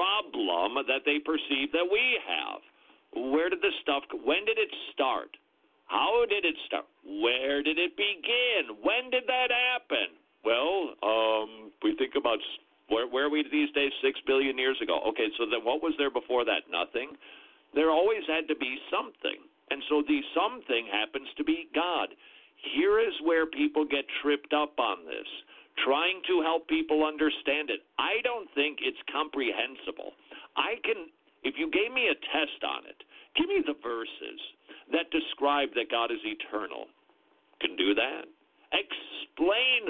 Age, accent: 50-69, American